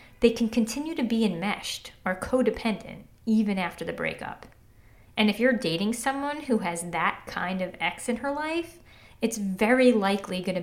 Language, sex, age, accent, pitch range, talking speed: English, female, 30-49, American, 190-250 Hz, 170 wpm